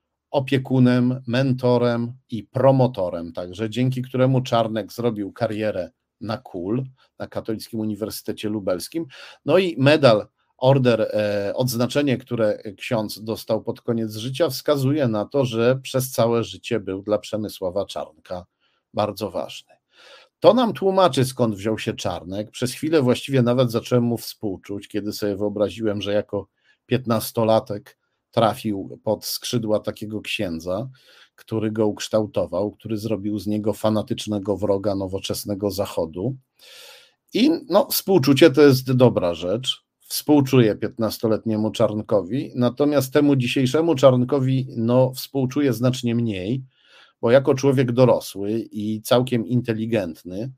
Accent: native